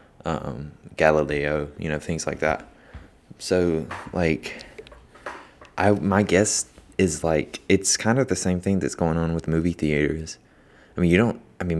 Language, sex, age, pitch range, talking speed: English, male, 20-39, 80-95 Hz, 165 wpm